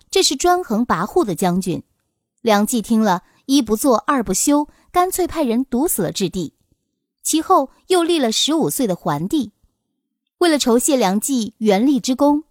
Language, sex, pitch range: Chinese, female, 210-300 Hz